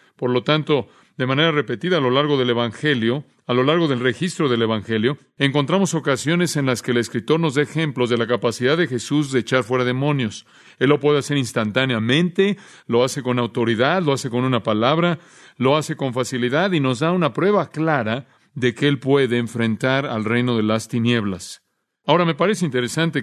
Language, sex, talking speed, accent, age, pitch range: Spanish, male, 195 wpm, Mexican, 40-59, 125-155 Hz